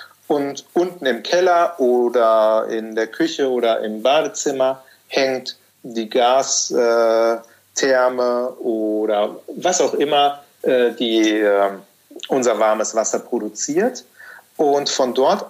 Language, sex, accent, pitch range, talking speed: German, male, German, 120-160 Hz, 110 wpm